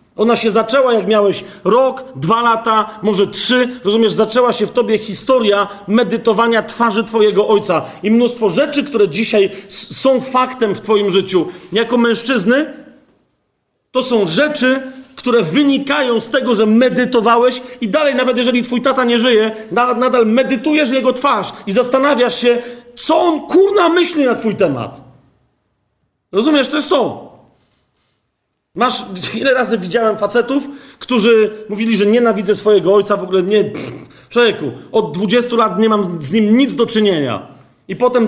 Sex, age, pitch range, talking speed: male, 40-59, 200-250 Hz, 145 wpm